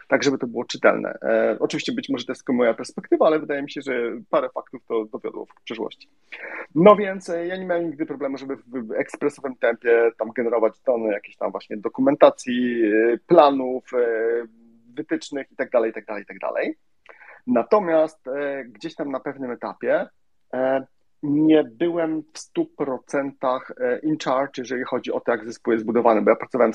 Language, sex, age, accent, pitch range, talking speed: Polish, male, 30-49, native, 125-165 Hz, 160 wpm